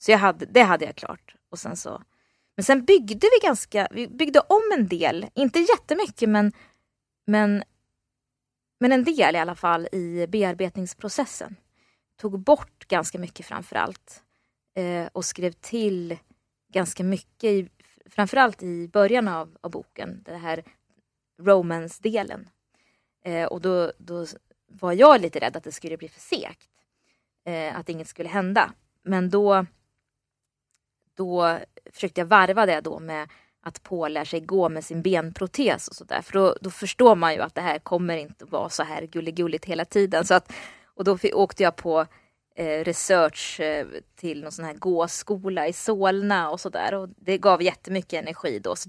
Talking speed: 165 wpm